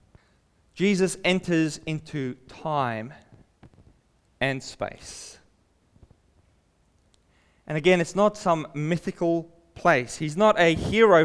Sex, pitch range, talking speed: male, 120-180 Hz, 90 wpm